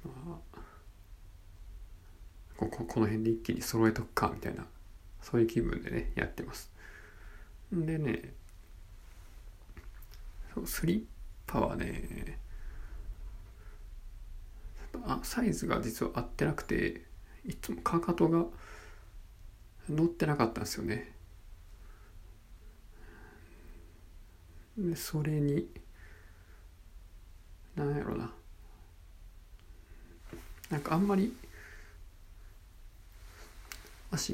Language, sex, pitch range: Japanese, male, 85-115 Hz